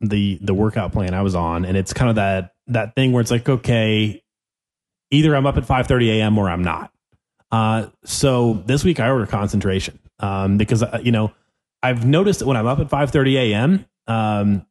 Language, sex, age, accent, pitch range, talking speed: English, male, 30-49, American, 100-125 Hz, 210 wpm